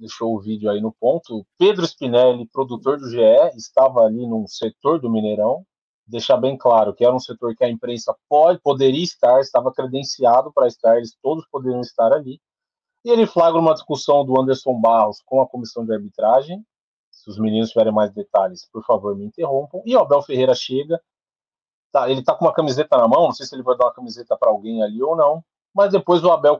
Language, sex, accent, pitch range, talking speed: Portuguese, male, Brazilian, 115-155 Hz, 210 wpm